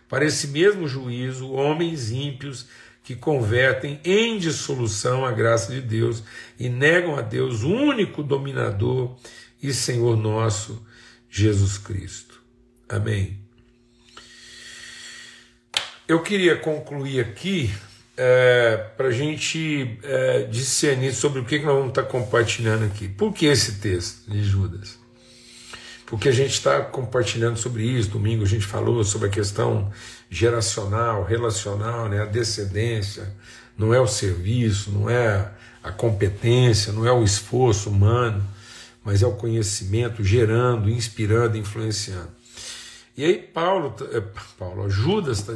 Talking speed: 125 wpm